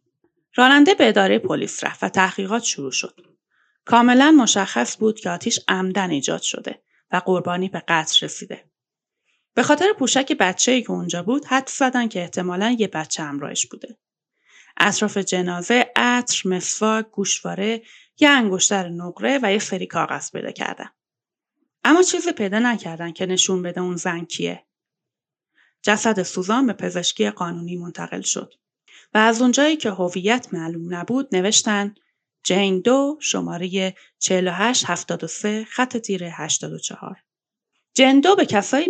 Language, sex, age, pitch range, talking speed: Persian, female, 30-49, 180-250 Hz, 135 wpm